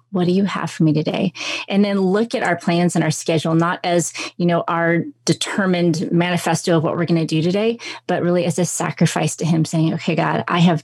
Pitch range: 160-190 Hz